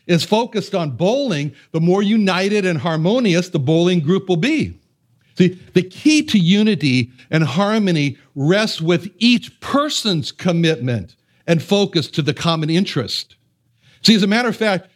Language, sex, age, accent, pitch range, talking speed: English, male, 60-79, American, 150-200 Hz, 150 wpm